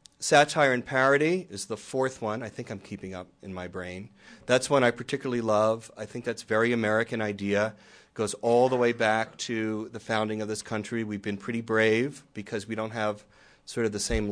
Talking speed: 215 wpm